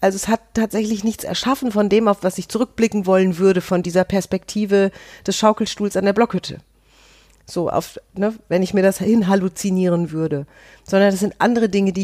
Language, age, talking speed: German, 40-59, 185 wpm